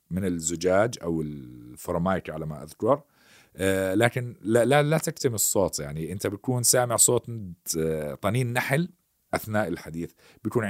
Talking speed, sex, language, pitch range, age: 135 wpm, male, Arabic, 80-115 Hz, 40-59